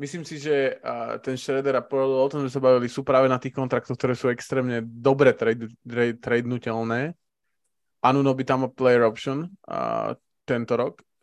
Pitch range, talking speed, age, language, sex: 120-135 Hz, 185 wpm, 20-39, Slovak, male